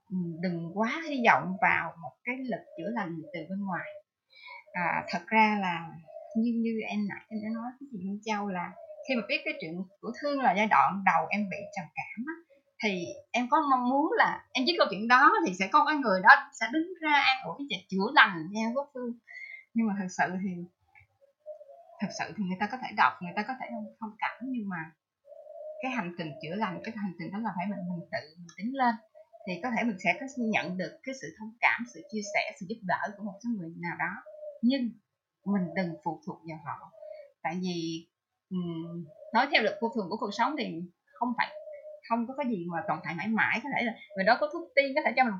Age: 20-39